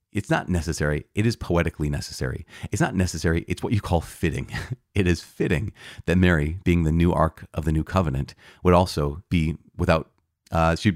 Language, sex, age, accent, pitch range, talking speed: English, male, 30-49, American, 85-110 Hz, 185 wpm